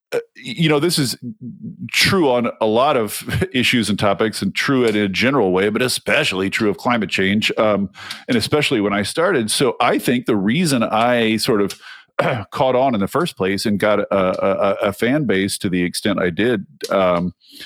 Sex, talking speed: male, 195 wpm